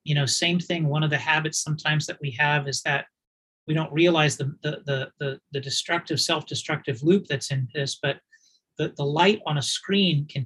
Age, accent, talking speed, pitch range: 40-59, American, 205 wpm, 145-175 Hz